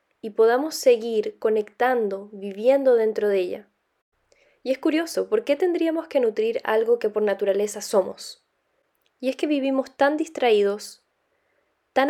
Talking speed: 140 wpm